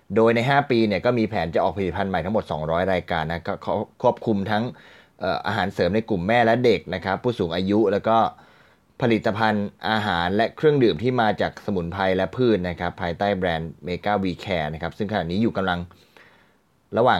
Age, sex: 20-39, male